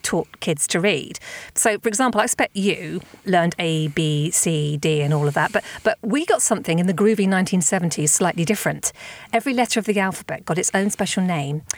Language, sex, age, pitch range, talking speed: English, female, 40-59, 160-205 Hz, 205 wpm